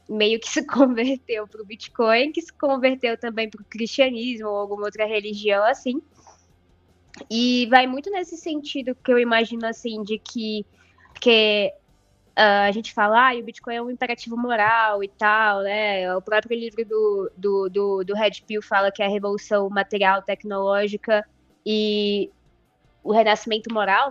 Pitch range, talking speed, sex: 210-255 Hz, 160 wpm, female